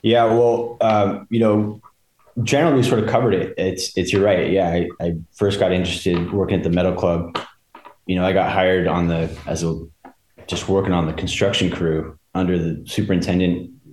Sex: male